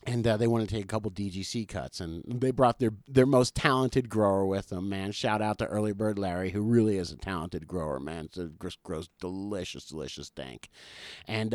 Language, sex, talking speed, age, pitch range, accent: English, male, 210 wpm, 50-69, 100-125 Hz, American